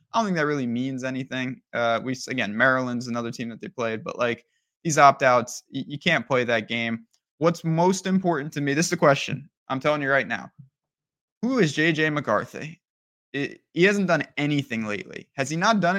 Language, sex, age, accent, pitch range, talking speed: English, male, 20-39, American, 130-165 Hz, 205 wpm